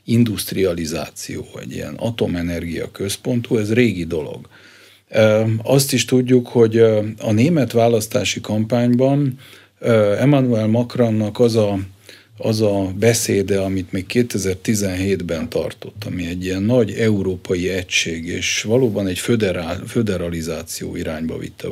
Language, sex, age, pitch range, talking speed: Hungarian, male, 50-69, 95-115 Hz, 105 wpm